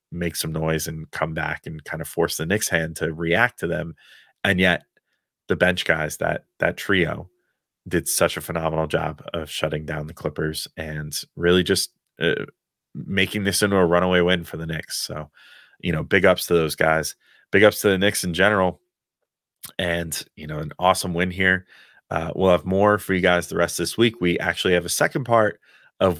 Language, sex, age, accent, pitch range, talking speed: English, male, 30-49, American, 80-95 Hz, 205 wpm